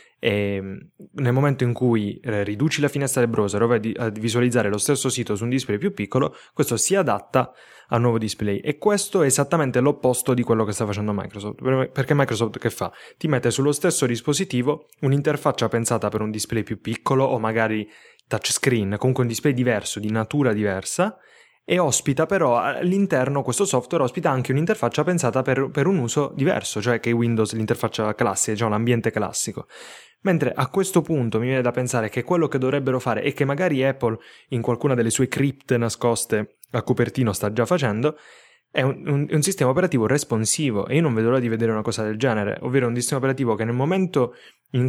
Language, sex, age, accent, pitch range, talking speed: Italian, male, 10-29, native, 115-140 Hz, 195 wpm